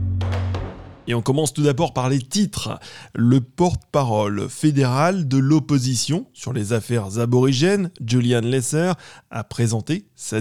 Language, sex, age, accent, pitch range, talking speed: French, male, 20-39, French, 115-155 Hz, 125 wpm